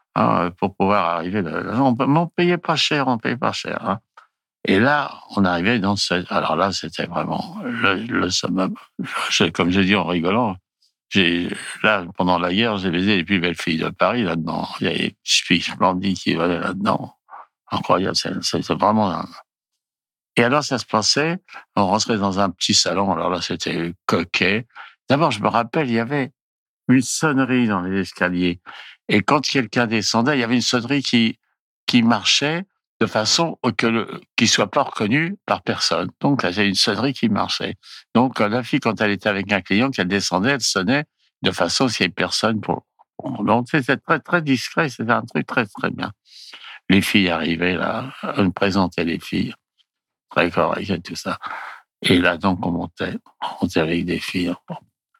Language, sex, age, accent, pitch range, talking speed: French, male, 60-79, French, 95-135 Hz, 185 wpm